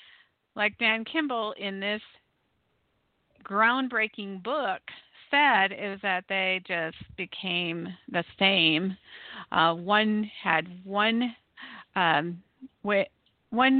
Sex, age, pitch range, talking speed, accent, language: female, 50-69, 190-235 Hz, 85 wpm, American, English